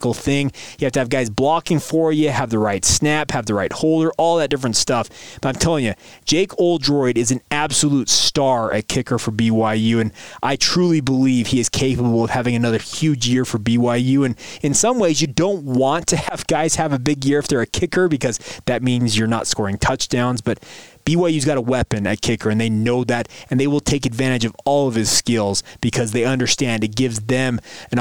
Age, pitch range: 20-39, 120-150 Hz